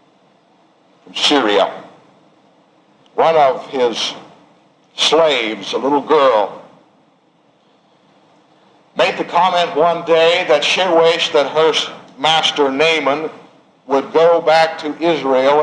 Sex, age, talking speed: male, 60-79, 95 wpm